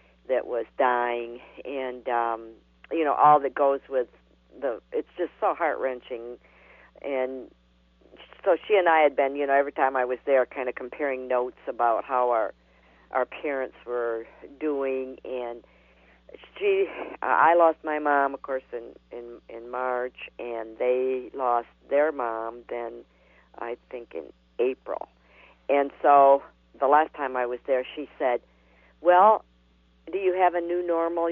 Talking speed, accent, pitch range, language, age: 155 wpm, American, 120-150 Hz, English, 50-69